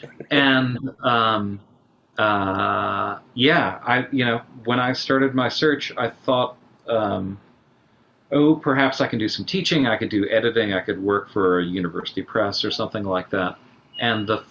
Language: English